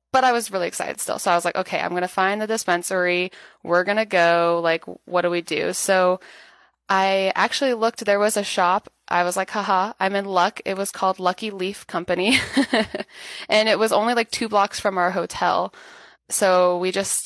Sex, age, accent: female, 20-39, American